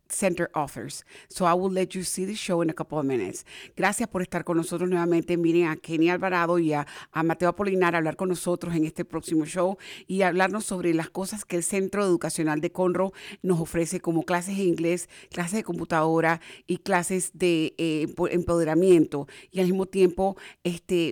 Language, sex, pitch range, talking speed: English, female, 165-185 Hz, 195 wpm